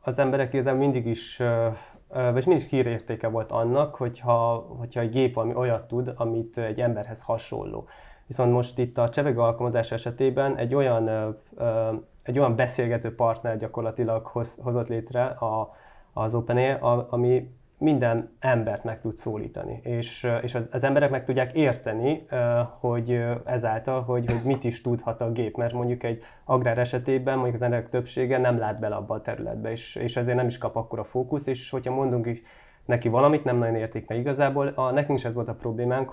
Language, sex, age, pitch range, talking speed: Hungarian, male, 20-39, 115-130 Hz, 170 wpm